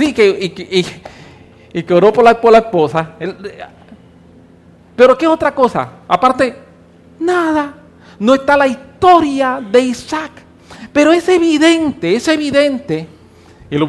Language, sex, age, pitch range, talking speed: English, male, 50-69, 190-260 Hz, 115 wpm